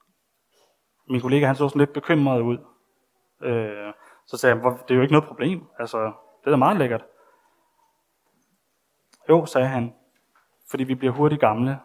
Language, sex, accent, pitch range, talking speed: Danish, male, native, 120-150 Hz, 160 wpm